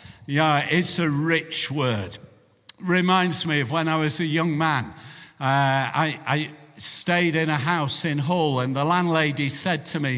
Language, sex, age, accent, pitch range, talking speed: English, male, 50-69, British, 150-175 Hz, 170 wpm